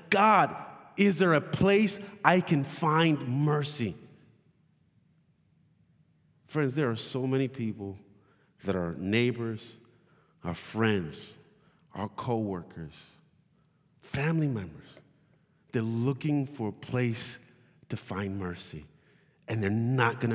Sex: male